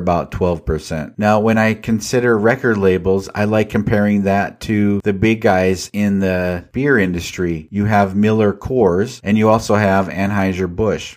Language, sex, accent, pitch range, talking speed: English, male, American, 95-110 Hz, 155 wpm